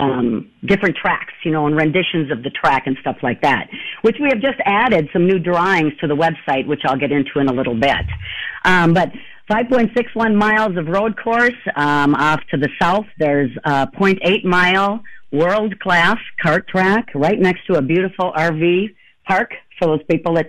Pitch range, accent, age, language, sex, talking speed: 155-200 Hz, American, 50-69, English, female, 180 wpm